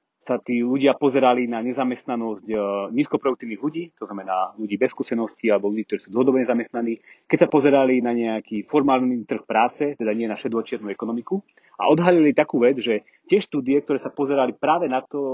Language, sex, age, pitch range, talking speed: Slovak, male, 30-49, 120-145 Hz, 175 wpm